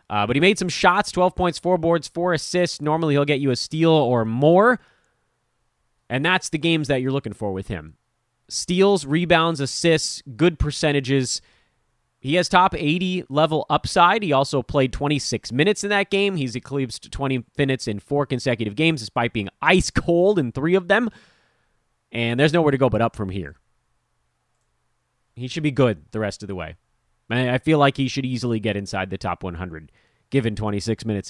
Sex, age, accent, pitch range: male, 30-49, American, 110-160 Hz